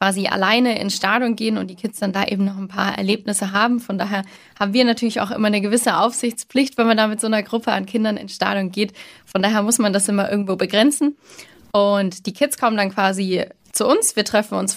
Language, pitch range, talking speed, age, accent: German, 195-230 Hz, 230 wpm, 20-39, German